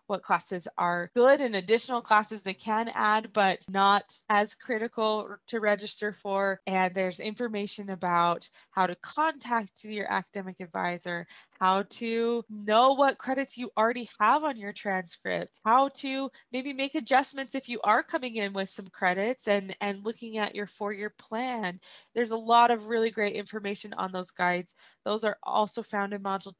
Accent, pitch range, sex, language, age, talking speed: American, 205-250 Hz, female, English, 20-39, 165 wpm